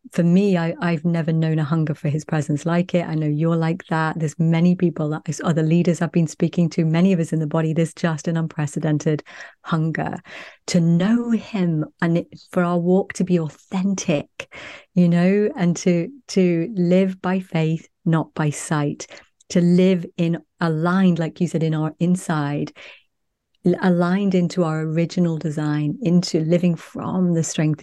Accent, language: British, English